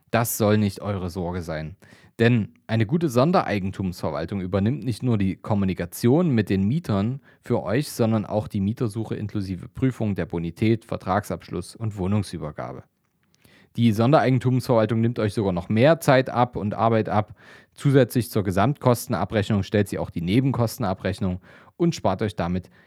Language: German